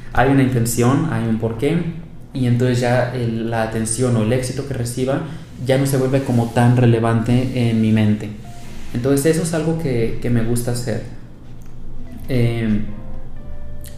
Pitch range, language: 115-135 Hz, Spanish